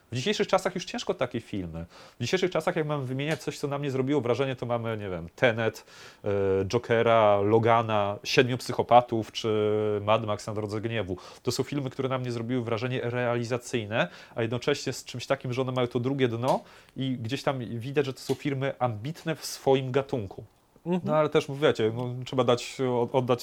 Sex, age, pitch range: male, 30-49, 105-130 Hz